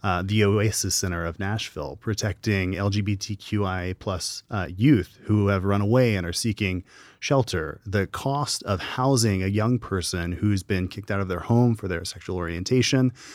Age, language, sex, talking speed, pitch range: 30-49, English, male, 165 wpm, 100-120 Hz